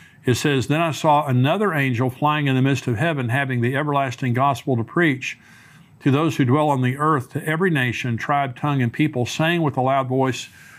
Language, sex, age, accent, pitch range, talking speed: English, male, 50-69, American, 125-150 Hz, 210 wpm